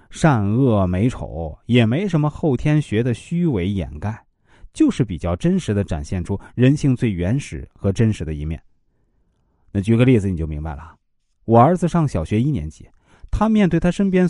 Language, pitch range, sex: Chinese, 100-160 Hz, male